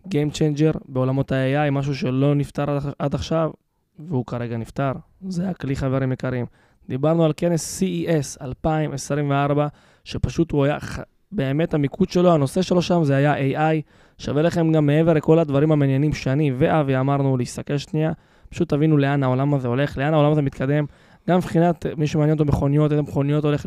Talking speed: 160 wpm